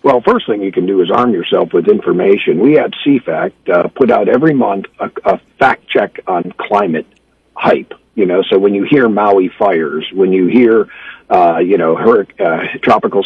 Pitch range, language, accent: 95-130 Hz, English, American